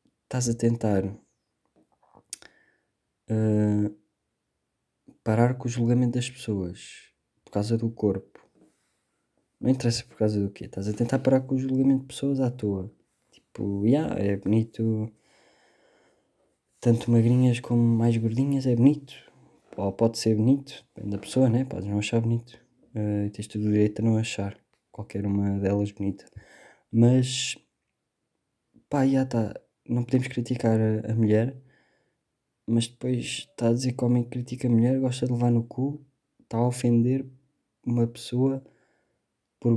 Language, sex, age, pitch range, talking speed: Portuguese, male, 20-39, 110-130 Hz, 150 wpm